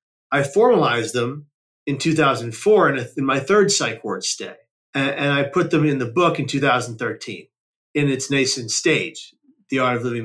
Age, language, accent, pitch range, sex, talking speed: 30-49, English, American, 130-160 Hz, male, 180 wpm